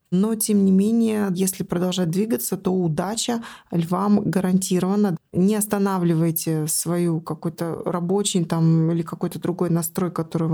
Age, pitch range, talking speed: 20-39, 165-195 Hz, 125 wpm